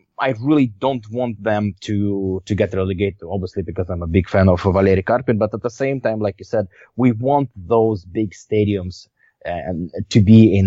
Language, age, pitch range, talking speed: English, 20-39, 95-115 Hz, 195 wpm